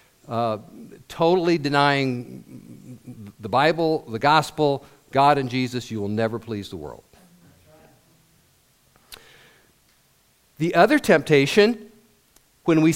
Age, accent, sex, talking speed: 50-69, American, male, 95 wpm